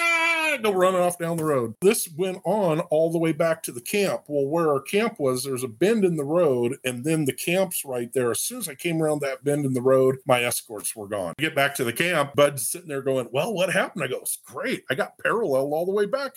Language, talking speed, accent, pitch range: English, 255 wpm, American, 135-190 Hz